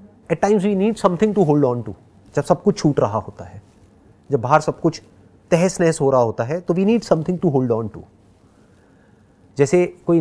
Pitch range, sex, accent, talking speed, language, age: 110-175 Hz, male, native, 210 wpm, Hindi, 30-49